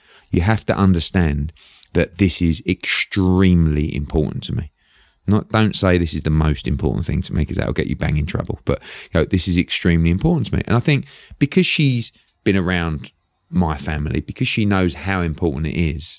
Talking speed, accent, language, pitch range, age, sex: 205 wpm, British, English, 80-115 Hz, 30-49, male